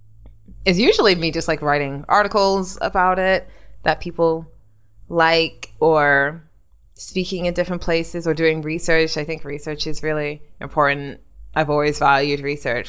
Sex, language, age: female, English, 20-39